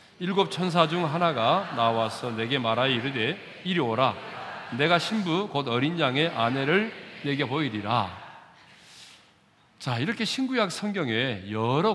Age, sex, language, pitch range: 40-59, male, Korean, 115-180 Hz